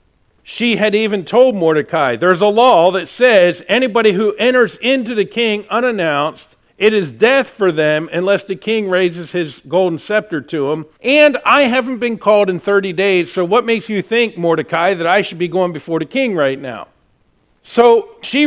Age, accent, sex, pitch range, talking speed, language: 50-69, American, male, 155-215 Hz, 185 wpm, English